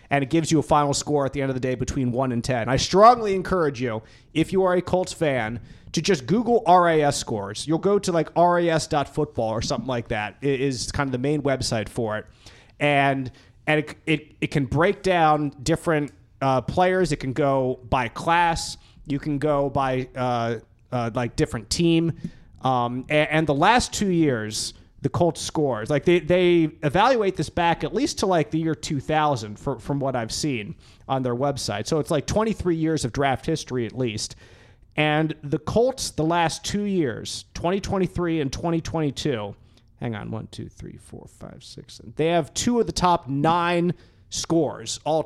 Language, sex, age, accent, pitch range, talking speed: English, male, 30-49, American, 125-165 Hz, 190 wpm